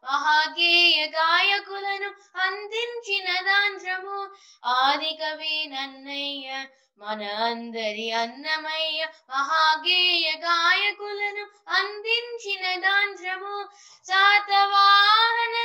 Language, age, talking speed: Telugu, 20-39, 50 wpm